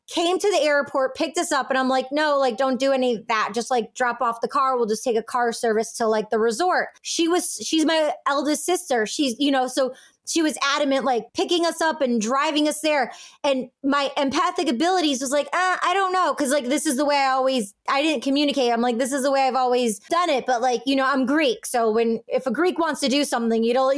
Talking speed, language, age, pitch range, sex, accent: 255 wpm, English, 20-39, 250-300 Hz, female, American